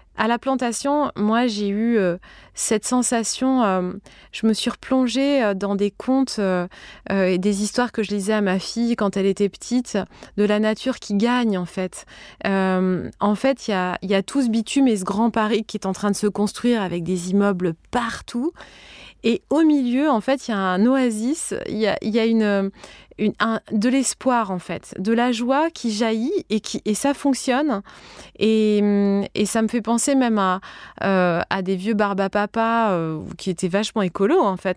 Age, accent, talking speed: 20-39, French, 195 wpm